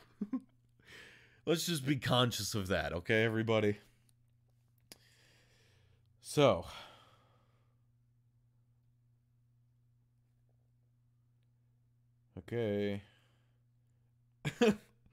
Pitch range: 115-120 Hz